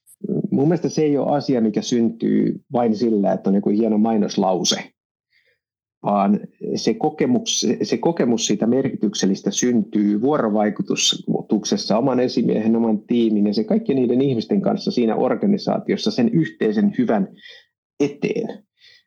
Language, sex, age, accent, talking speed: Finnish, male, 50-69, native, 115 wpm